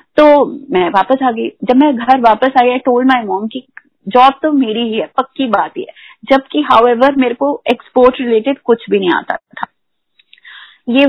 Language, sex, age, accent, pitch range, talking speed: Hindi, female, 30-49, native, 230-270 Hz, 185 wpm